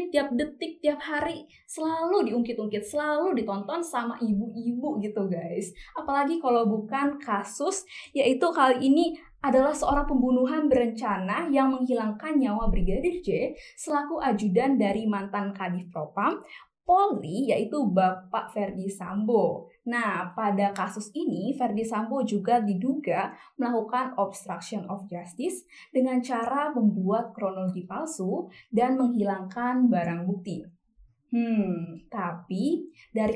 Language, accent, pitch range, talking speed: Indonesian, native, 195-265 Hz, 115 wpm